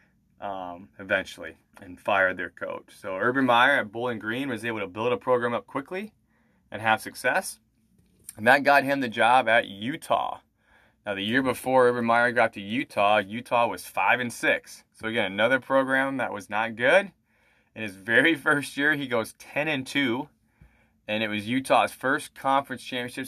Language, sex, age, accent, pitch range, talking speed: English, male, 20-39, American, 100-125 Hz, 180 wpm